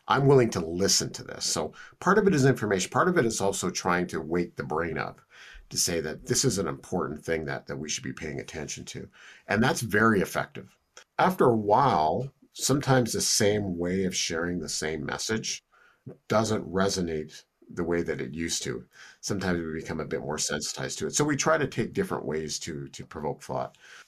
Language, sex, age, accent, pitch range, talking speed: English, male, 50-69, American, 80-115 Hz, 205 wpm